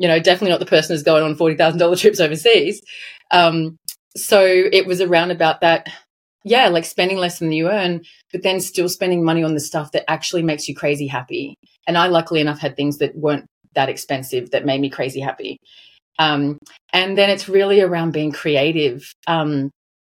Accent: Australian